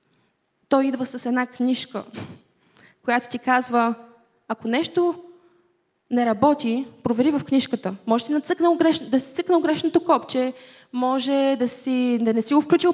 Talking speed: 150 wpm